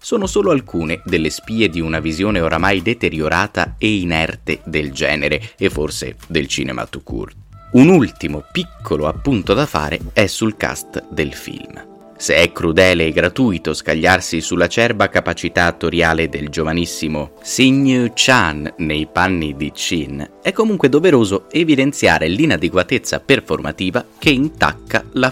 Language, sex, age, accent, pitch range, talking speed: Italian, male, 30-49, native, 80-115 Hz, 135 wpm